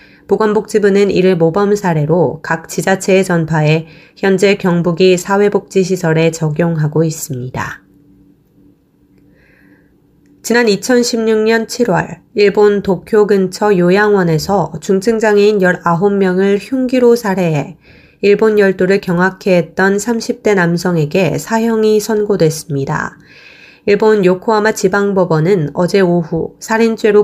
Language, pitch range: Korean, 170-210 Hz